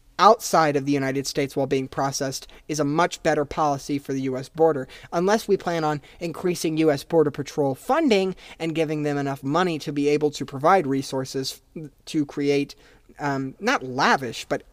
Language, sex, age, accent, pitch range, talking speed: English, male, 30-49, American, 135-160 Hz, 175 wpm